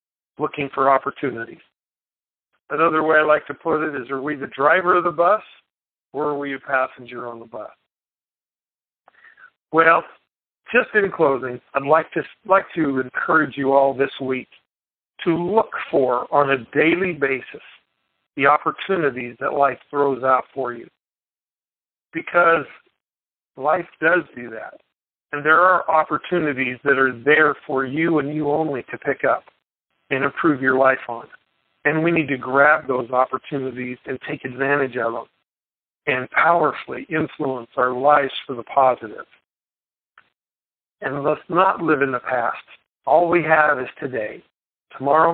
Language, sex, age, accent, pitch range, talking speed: English, male, 50-69, American, 130-160 Hz, 150 wpm